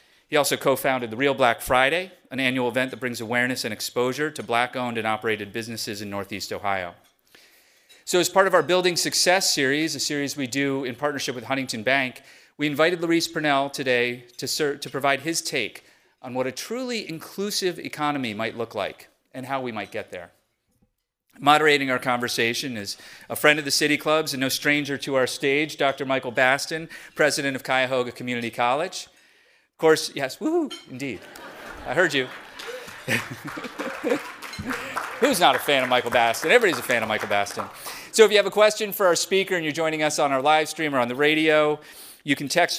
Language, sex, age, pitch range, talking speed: English, male, 30-49, 120-155 Hz, 190 wpm